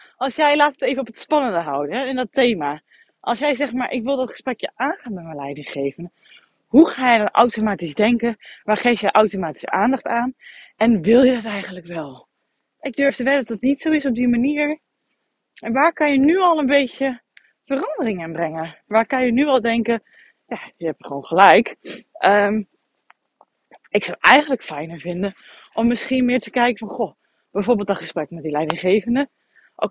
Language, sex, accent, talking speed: Dutch, female, Dutch, 195 wpm